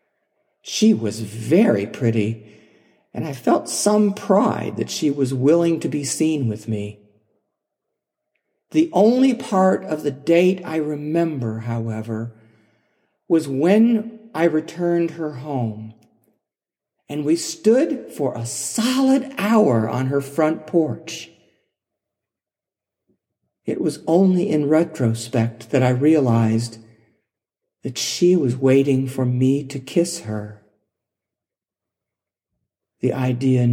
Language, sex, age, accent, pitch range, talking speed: English, male, 50-69, American, 115-175 Hz, 110 wpm